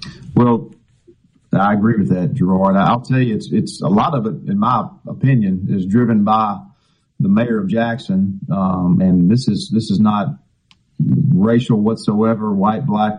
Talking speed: 165 wpm